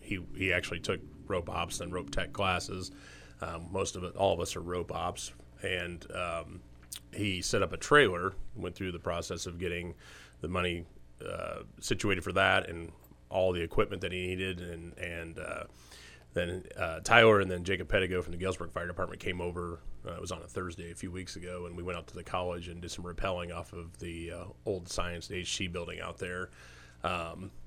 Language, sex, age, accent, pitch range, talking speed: English, male, 30-49, American, 85-95 Hz, 205 wpm